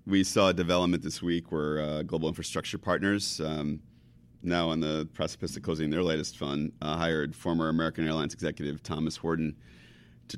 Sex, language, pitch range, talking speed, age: male, English, 75-85 Hz, 175 wpm, 30-49